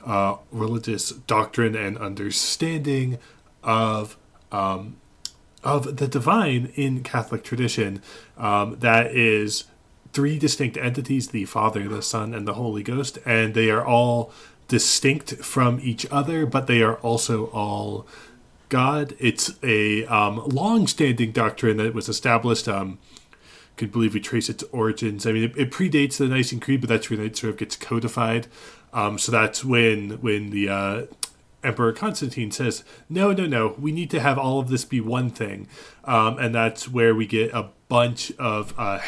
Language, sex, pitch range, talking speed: English, male, 110-130 Hz, 160 wpm